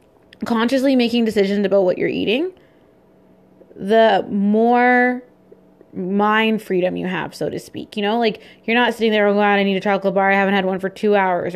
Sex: female